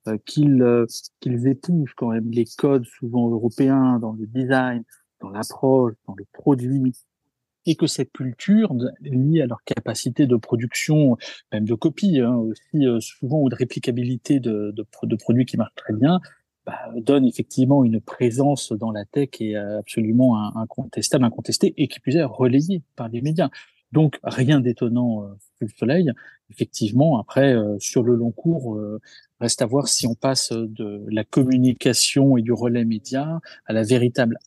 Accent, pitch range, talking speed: French, 115-140 Hz, 165 wpm